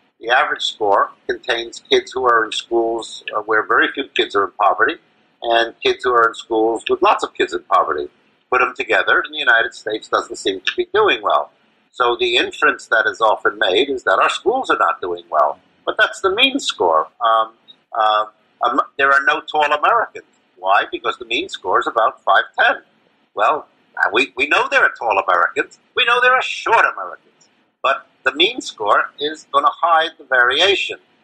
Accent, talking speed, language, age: American, 190 wpm, English, 50-69